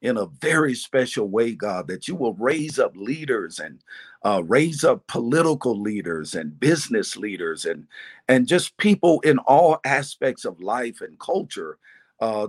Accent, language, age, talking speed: American, English, 50-69, 160 wpm